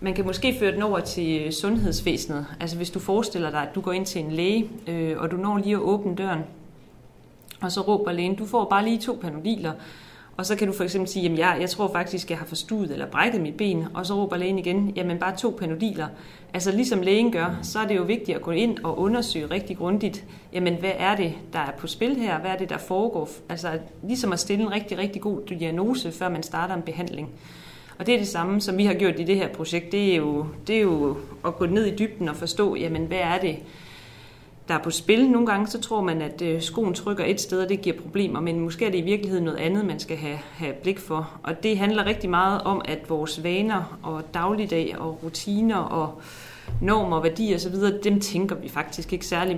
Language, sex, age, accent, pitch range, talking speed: Danish, female, 30-49, native, 165-200 Hz, 235 wpm